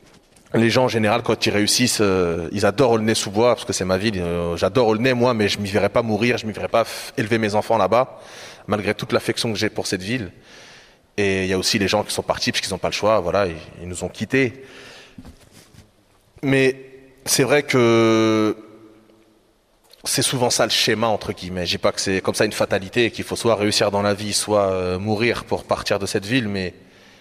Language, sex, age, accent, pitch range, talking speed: French, male, 20-39, French, 95-115 Hz, 240 wpm